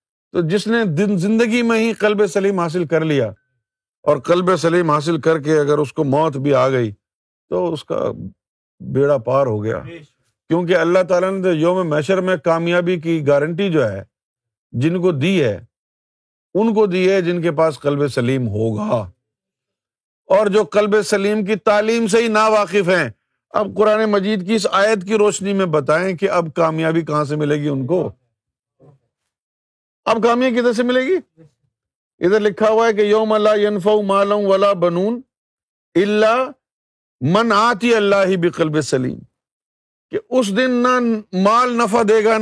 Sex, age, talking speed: male, 50-69, 155 wpm